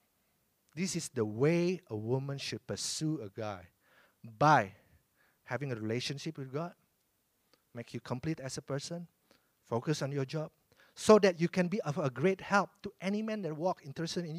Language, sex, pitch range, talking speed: English, male, 120-170 Hz, 175 wpm